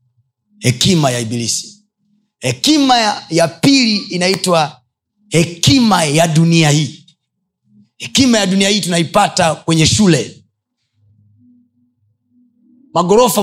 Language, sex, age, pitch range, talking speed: Swahili, male, 30-49, 120-180 Hz, 90 wpm